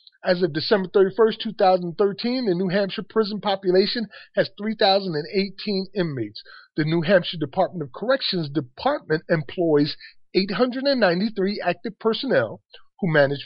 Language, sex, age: English, male, 40-59